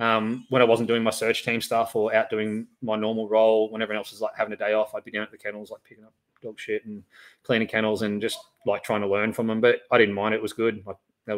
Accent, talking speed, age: Australian, 290 wpm, 20-39